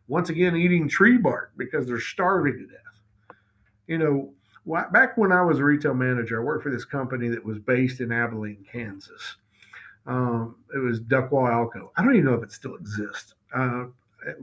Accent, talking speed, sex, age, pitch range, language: American, 185 wpm, male, 50-69, 125-165 Hz, English